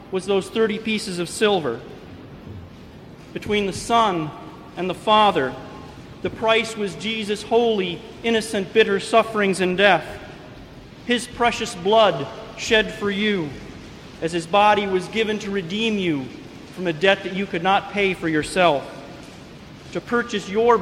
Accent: American